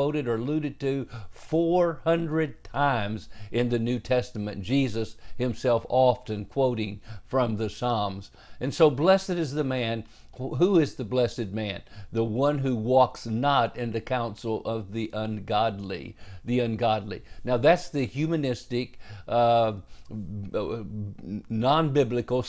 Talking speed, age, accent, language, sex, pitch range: 125 wpm, 50-69, American, English, male, 110-135 Hz